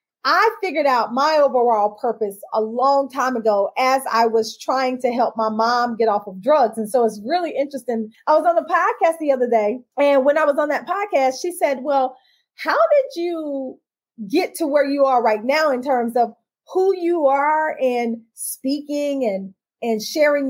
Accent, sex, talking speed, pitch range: American, female, 195 wpm, 235-305 Hz